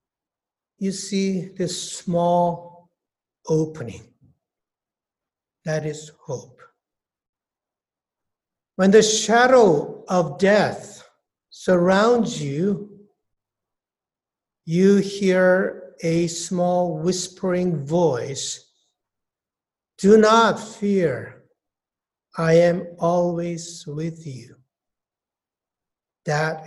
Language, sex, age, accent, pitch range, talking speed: English, male, 60-79, Japanese, 170-245 Hz, 65 wpm